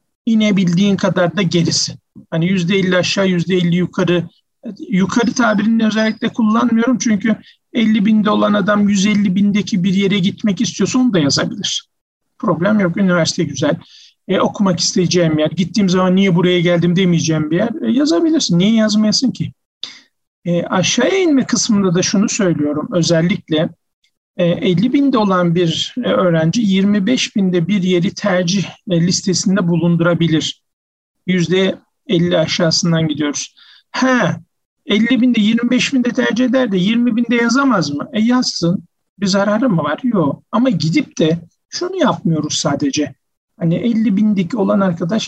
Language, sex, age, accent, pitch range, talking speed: Turkish, male, 50-69, native, 175-220 Hz, 130 wpm